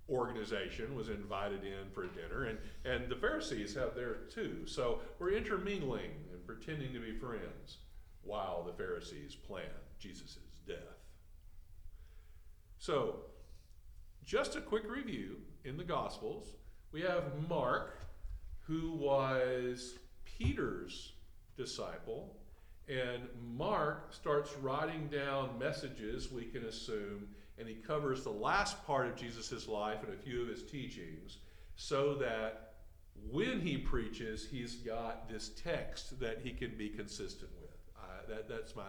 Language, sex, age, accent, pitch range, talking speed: English, male, 50-69, American, 95-155 Hz, 130 wpm